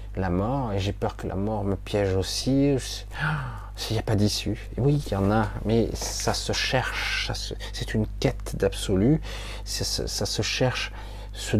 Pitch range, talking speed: 100-115 Hz, 195 wpm